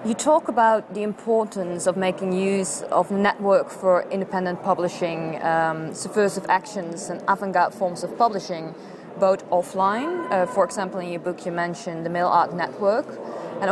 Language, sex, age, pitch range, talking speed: English, female, 20-39, 180-220 Hz, 155 wpm